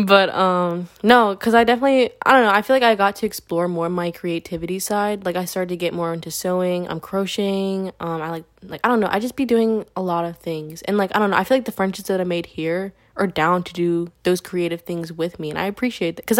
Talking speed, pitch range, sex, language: 265 wpm, 160-190 Hz, female, English